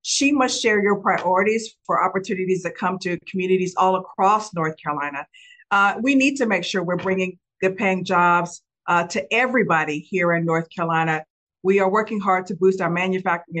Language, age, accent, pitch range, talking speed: English, 50-69, American, 180-225 Hz, 180 wpm